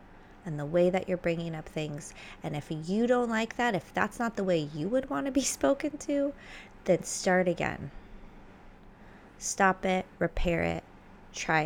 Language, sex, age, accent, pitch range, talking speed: English, female, 20-39, American, 160-195 Hz, 175 wpm